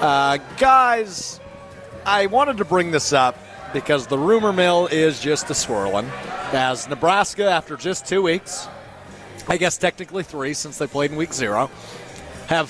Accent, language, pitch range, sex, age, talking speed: American, English, 145-200 Hz, male, 40-59, 155 wpm